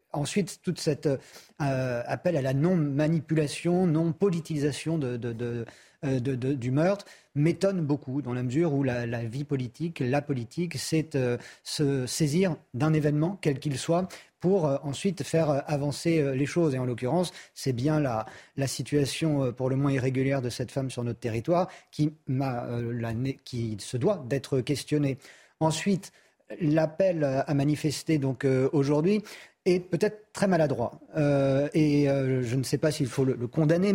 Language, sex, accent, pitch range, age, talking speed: French, male, French, 130-160 Hz, 40-59, 170 wpm